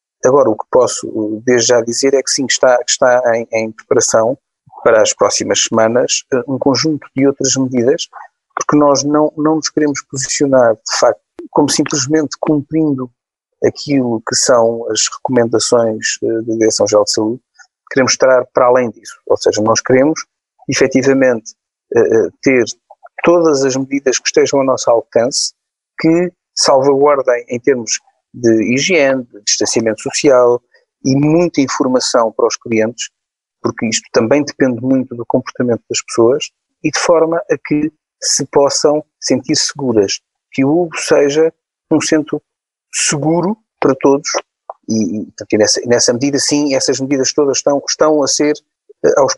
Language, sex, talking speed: Portuguese, male, 145 wpm